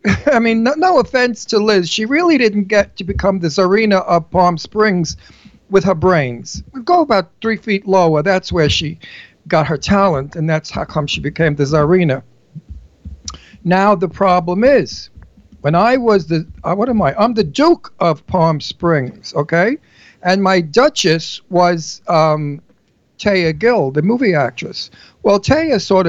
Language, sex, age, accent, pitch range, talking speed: English, male, 50-69, American, 160-215 Hz, 165 wpm